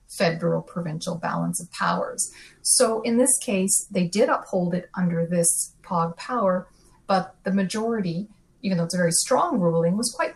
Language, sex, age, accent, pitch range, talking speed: English, female, 30-49, American, 170-200 Hz, 170 wpm